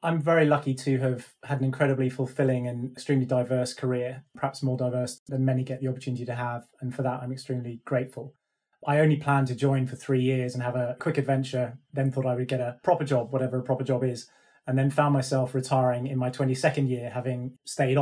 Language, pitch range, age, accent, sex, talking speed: English, 130-140 Hz, 20-39, British, male, 220 wpm